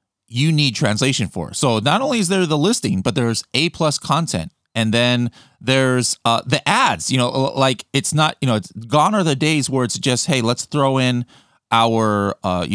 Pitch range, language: 105-140 Hz, English